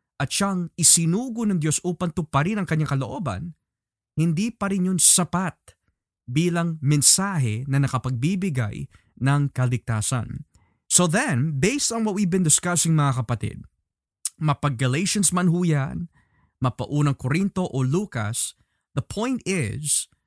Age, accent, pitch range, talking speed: 20-39, native, 130-180 Hz, 115 wpm